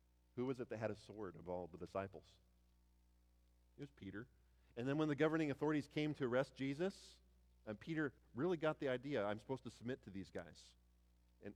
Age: 40-59